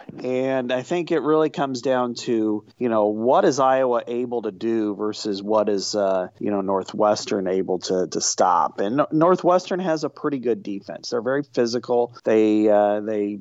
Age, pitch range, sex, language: 40-59, 115-135 Hz, male, English